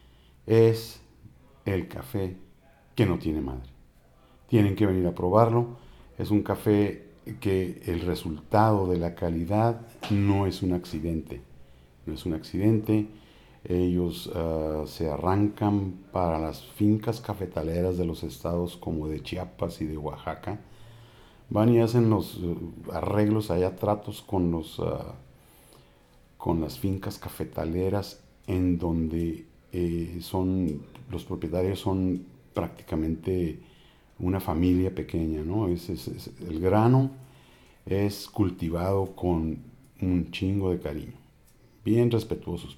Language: Spanish